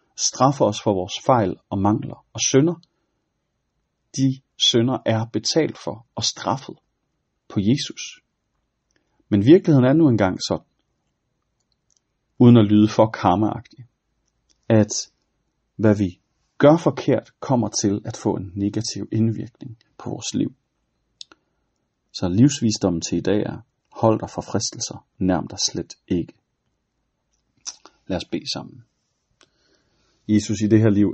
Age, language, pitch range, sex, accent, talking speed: 40-59, Danish, 105-130 Hz, male, native, 130 wpm